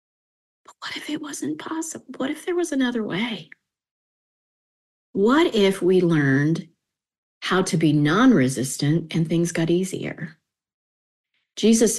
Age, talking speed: 40-59, 120 wpm